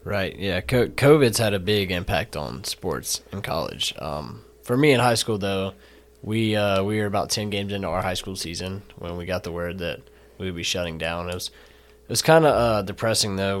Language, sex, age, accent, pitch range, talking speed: English, male, 20-39, American, 95-105 Hz, 215 wpm